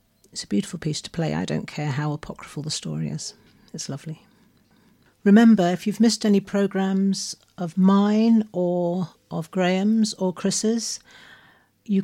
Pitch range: 165-200 Hz